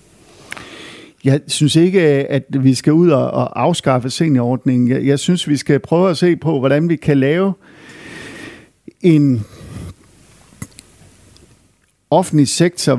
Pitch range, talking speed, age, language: 125-155 Hz, 120 wpm, 50-69, Danish